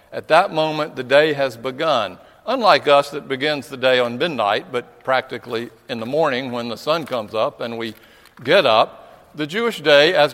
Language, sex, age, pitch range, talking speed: English, male, 60-79, 125-155 Hz, 190 wpm